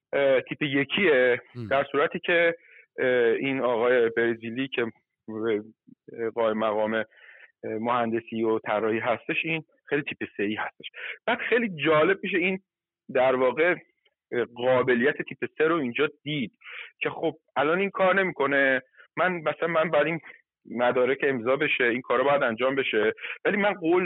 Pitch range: 125-170 Hz